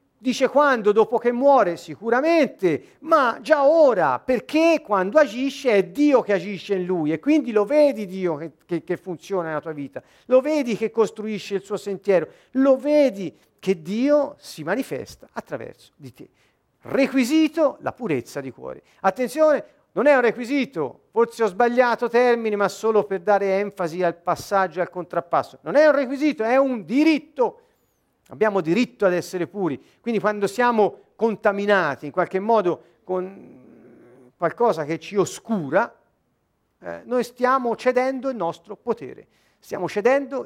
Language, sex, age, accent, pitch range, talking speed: Italian, male, 50-69, native, 175-255 Hz, 155 wpm